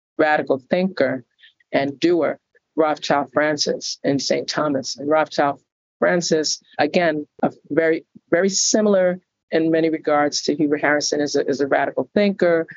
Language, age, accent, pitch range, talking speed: English, 50-69, American, 145-165 Hz, 135 wpm